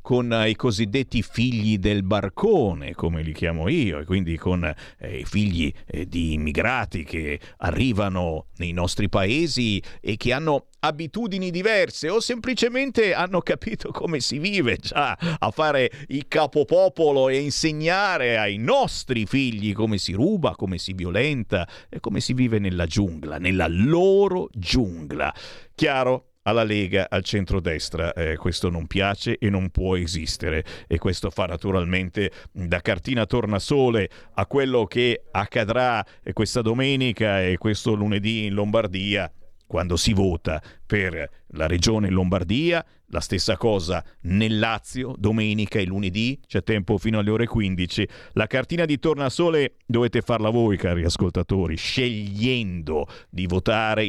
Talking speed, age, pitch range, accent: 140 wpm, 50-69, 90-125 Hz, native